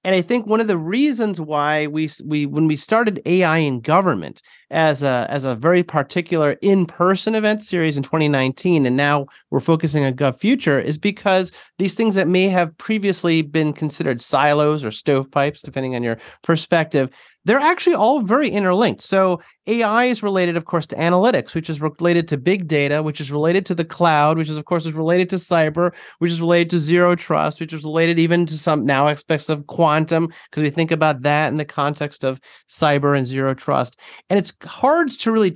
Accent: American